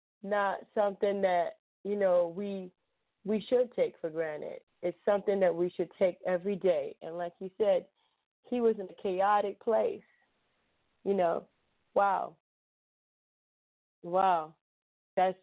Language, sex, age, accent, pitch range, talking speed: English, female, 30-49, American, 170-200 Hz, 130 wpm